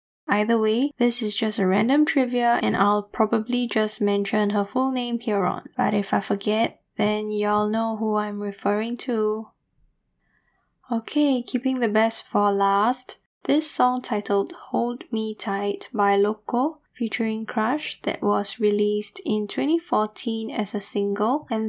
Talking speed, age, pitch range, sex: 150 wpm, 10-29, 205-240 Hz, female